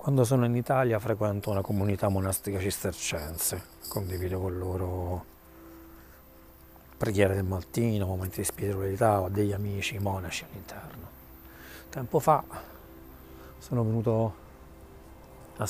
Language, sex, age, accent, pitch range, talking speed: Italian, male, 40-59, native, 85-115 Hz, 105 wpm